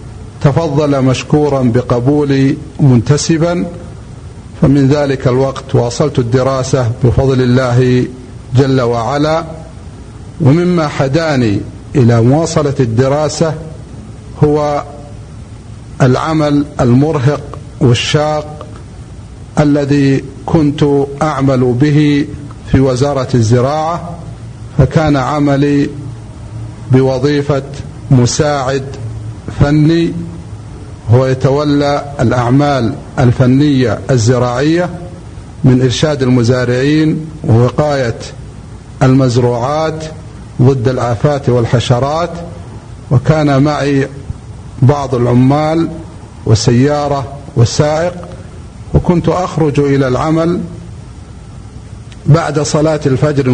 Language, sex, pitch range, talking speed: Arabic, male, 120-150 Hz, 65 wpm